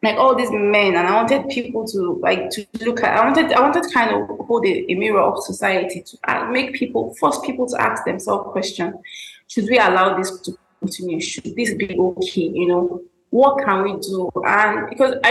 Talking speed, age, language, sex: 210 wpm, 20-39, English, female